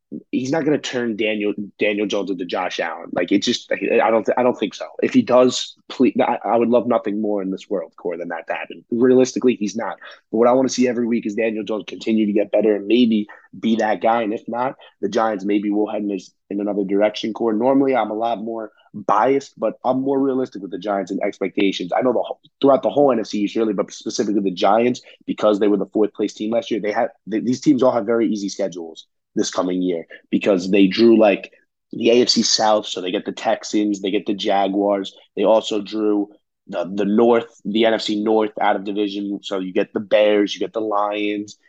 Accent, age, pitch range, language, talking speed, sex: American, 20-39, 105-115 Hz, English, 230 wpm, male